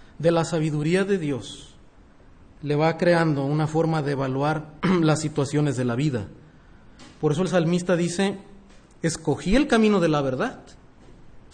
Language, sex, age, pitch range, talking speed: Spanish, male, 40-59, 140-205 Hz, 150 wpm